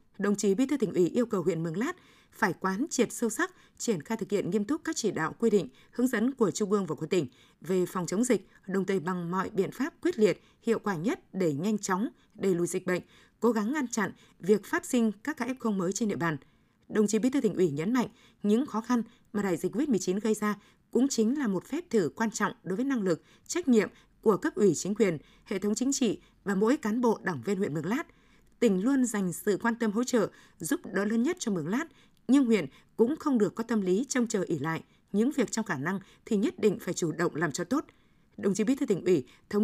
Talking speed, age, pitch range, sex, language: 255 wpm, 20-39, 185-235 Hz, female, Vietnamese